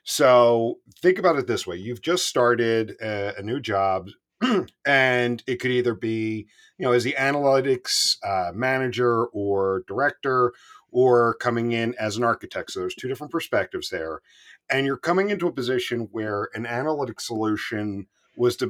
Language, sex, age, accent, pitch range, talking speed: English, male, 40-59, American, 105-130 Hz, 155 wpm